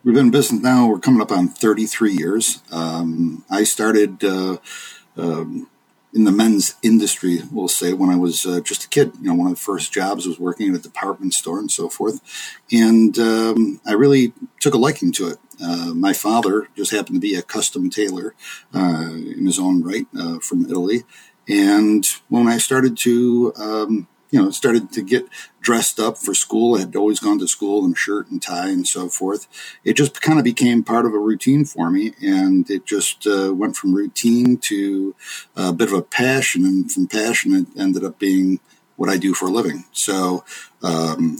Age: 50-69